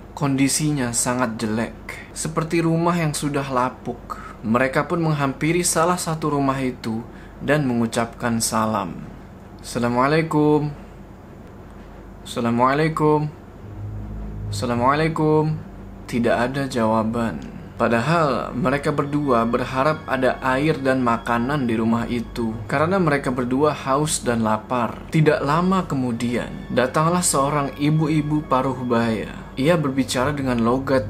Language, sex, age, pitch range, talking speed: Indonesian, male, 20-39, 115-150 Hz, 100 wpm